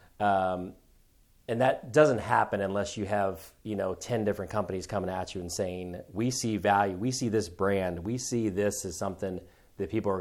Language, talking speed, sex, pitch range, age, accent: English, 195 wpm, male, 95-115 Hz, 30-49, American